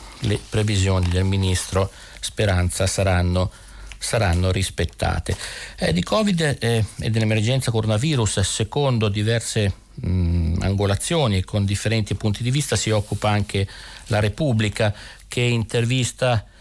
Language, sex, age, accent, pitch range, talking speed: Italian, male, 50-69, native, 100-115 Hz, 110 wpm